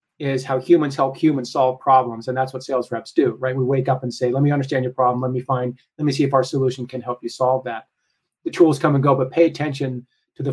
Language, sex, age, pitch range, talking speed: English, male, 30-49, 130-160 Hz, 275 wpm